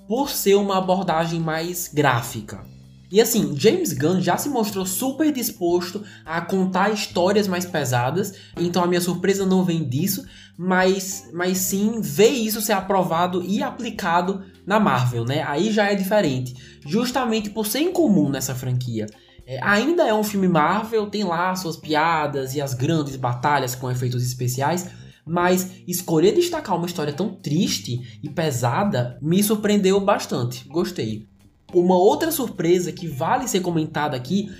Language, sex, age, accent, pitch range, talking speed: Portuguese, male, 20-39, Brazilian, 150-200 Hz, 150 wpm